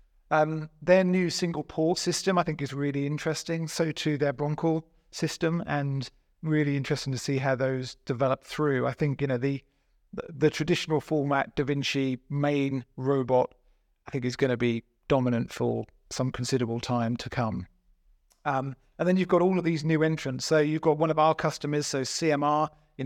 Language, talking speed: English, 185 wpm